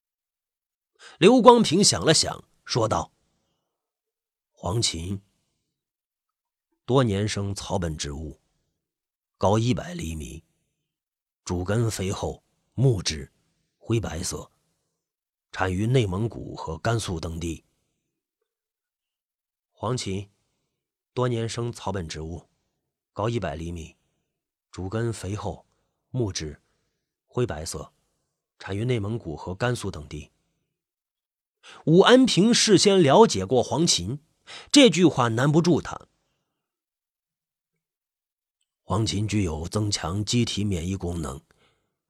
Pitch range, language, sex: 90-130 Hz, Chinese, male